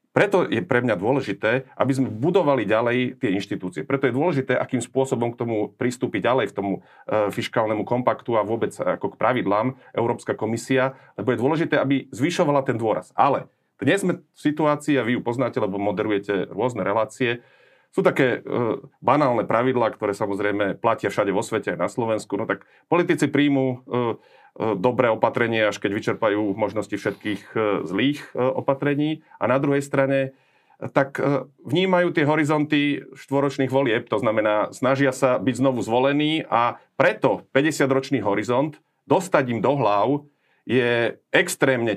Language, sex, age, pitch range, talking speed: Slovak, male, 40-59, 110-140 Hz, 155 wpm